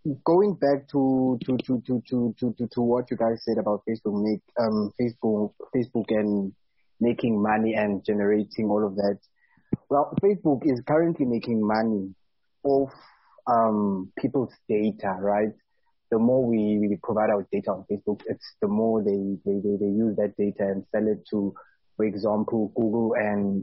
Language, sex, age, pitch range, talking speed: English, male, 20-39, 105-130 Hz, 165 wpm